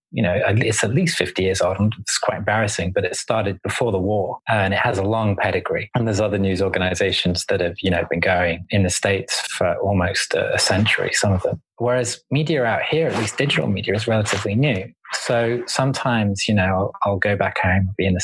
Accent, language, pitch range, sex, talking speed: British, English, 95-115 Hz, male, 215 wpm